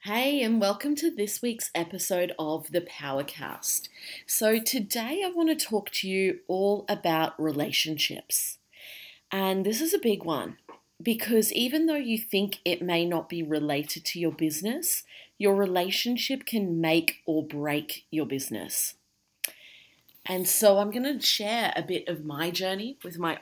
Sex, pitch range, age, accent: female, 155-210 Hz, 30-49, Australian